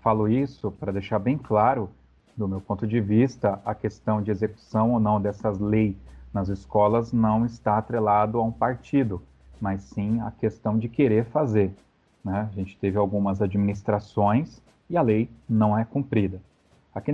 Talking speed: 165 wpm